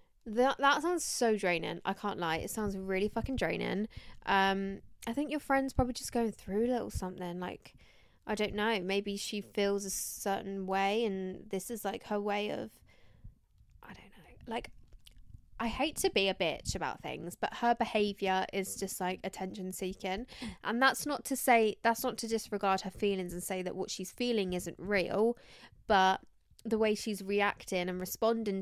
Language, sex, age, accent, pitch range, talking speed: English, female, 10-29, British, 185-225 Hz, 180 wpm